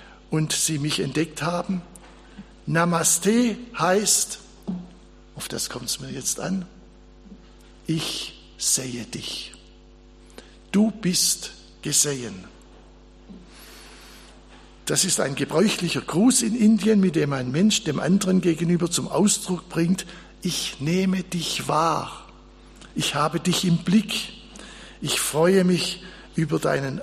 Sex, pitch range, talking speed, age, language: male, 135-190 Hz, 115 wpm, 60-79, German